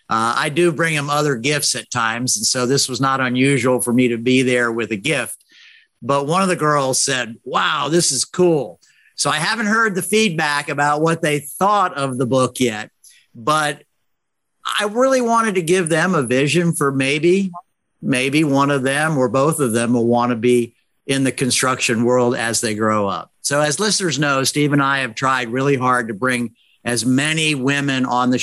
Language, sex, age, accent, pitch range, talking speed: English, male, 50-69, American, 125-150 Hz, 205 wpm